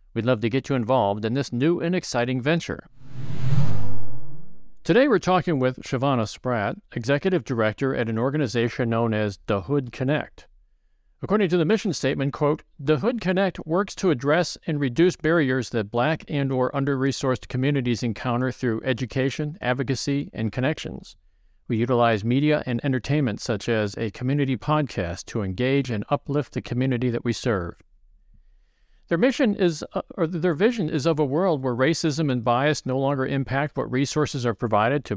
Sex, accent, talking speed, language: male, American, 165 wpm, English